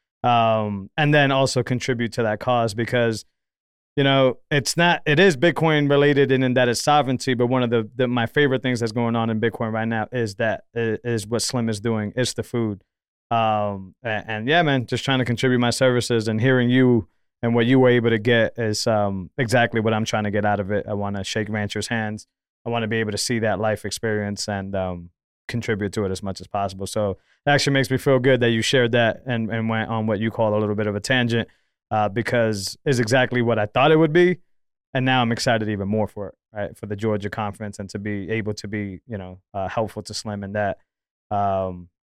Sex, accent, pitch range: male, American, 105-125 Hz